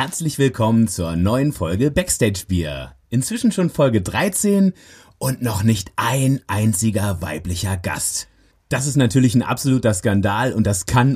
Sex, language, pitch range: male, German, 100-140 Hz